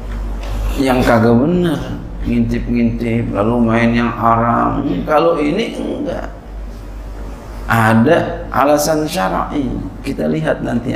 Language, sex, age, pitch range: Indonesian, male, 40-59, 105-145 Hz